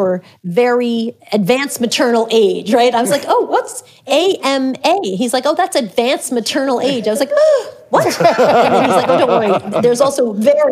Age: 40-59